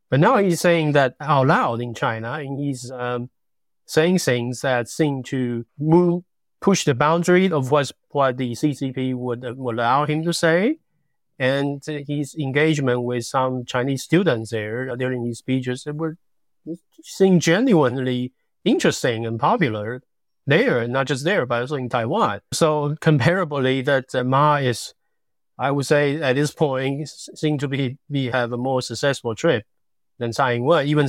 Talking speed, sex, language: 165 wpm, male, English